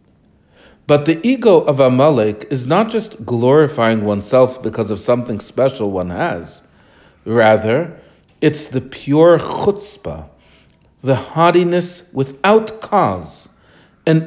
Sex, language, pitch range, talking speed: male, English, 110-165 Hz, 110 wpm